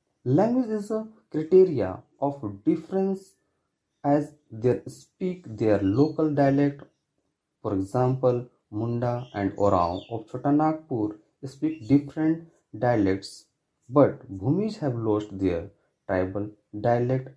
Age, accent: 30-49, native